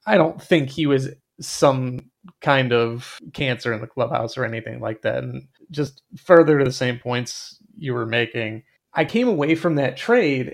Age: 30-49